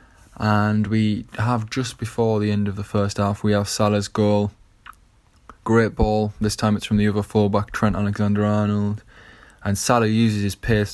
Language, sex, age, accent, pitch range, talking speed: English, male, 20-39, British, 100-105 Hz, 175 wpm